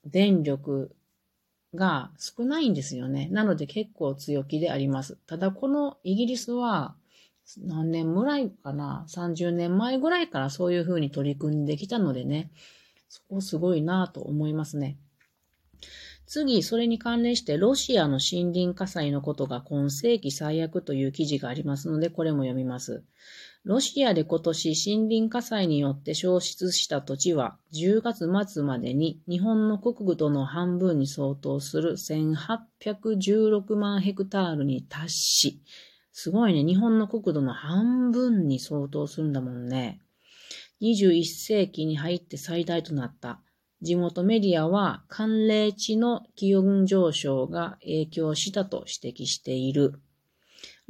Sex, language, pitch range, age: female, Japanese, 145-205 Hz, 40-59